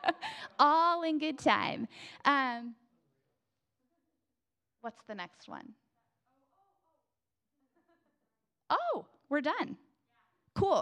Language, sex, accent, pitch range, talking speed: English, female, American, 175-230 Hz, 70 wpm